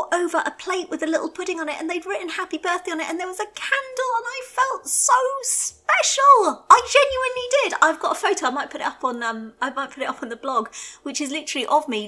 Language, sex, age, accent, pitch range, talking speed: English, female, 30-49, British, 205-305 Hz, 265 wpm